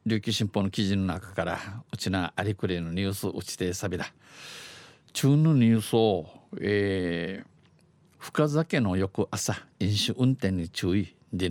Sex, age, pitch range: male, 50-69, 95-125 Hz